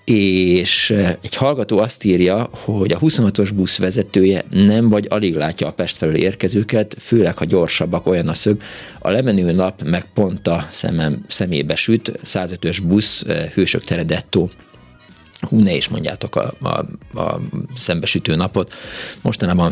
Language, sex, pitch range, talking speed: Hungarian, male, 90-110 Hz, 145 wpm